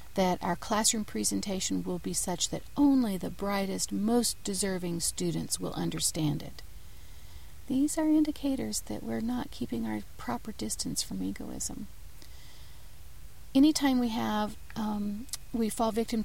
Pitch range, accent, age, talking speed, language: 175-250 Hz, American, 40-59, 135 wpm, English